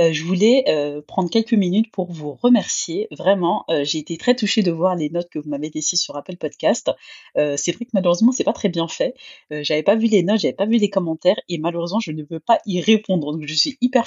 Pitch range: 160-210 Hz